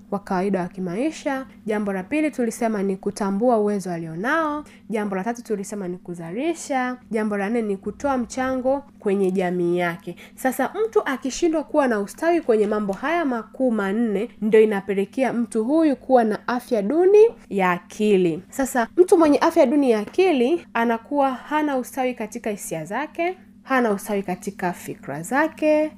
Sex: female